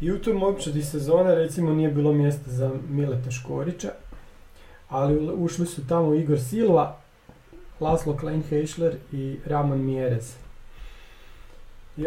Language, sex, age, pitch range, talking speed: Croatian, male, 40-59, 135-155 Hz, 125 wpm